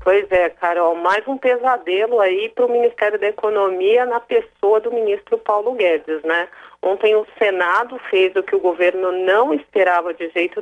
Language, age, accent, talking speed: Portuguese, 40-59, Brazilian, 175 wpm